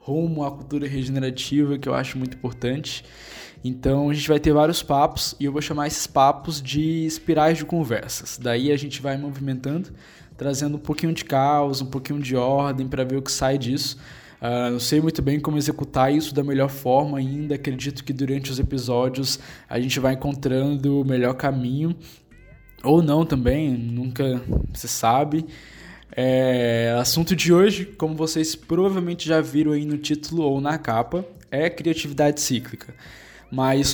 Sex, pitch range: male, 130-155 Hz